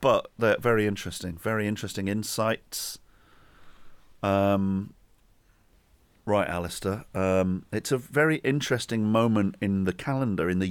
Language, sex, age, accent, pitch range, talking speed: English, male, 40-59, British, 95-115 Hz, 120 wpm